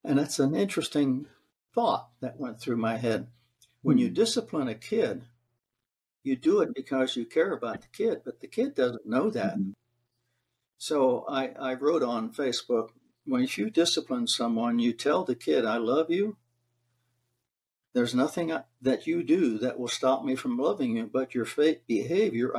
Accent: American